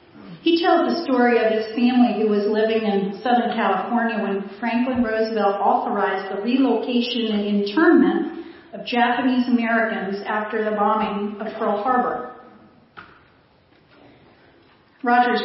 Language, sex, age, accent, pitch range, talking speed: English, female, 40-59, American, 210-255 Hz, 120 wpm